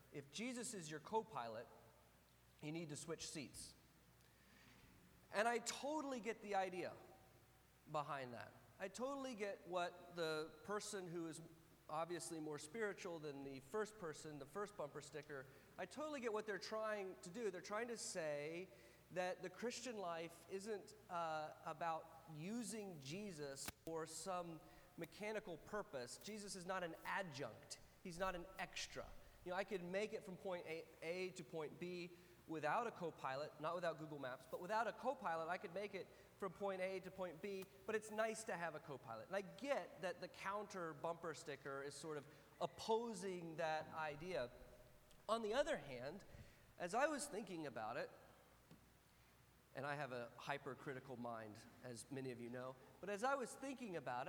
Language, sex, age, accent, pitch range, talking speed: English, male, 40-59, American, 150-205 Hz, 170 wpm